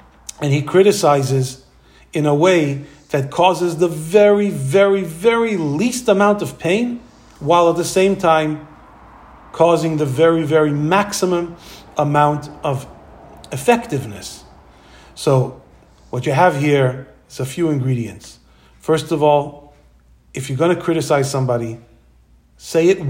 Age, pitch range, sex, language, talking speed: 40-59, 135-185 Hz, male, English, 125 wpm